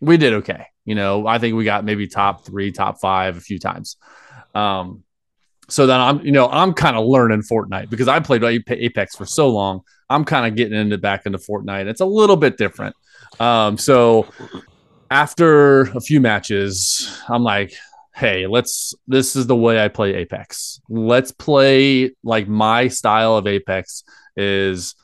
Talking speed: 175 wpm